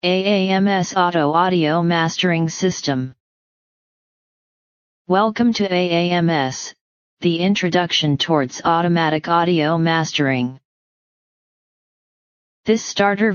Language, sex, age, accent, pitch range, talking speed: English, female, 30-49, American, 155-185 Hz, 70 wpm